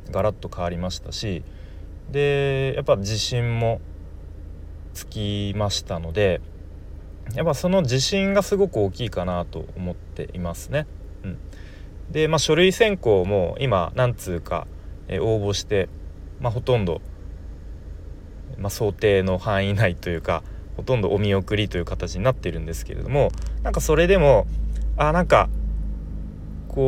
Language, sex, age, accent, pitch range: Japanese, male, 30-49, native, 80-125 Hz